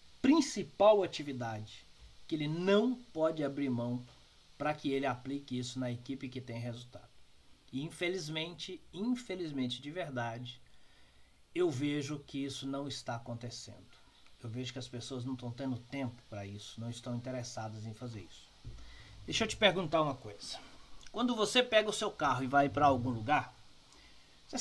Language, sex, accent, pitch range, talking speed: Portuguese, male, Brazilian, 125-195 Hz, 160 wpm